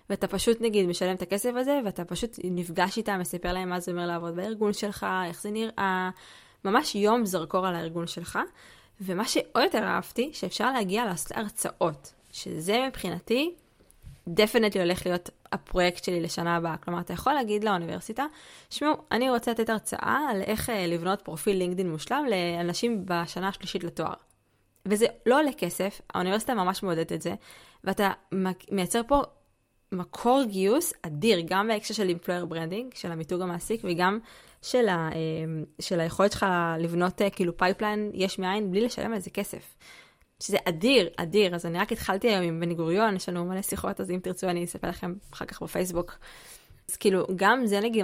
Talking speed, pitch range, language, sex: 160 wpm, 175-220 Hz, Hebrew, female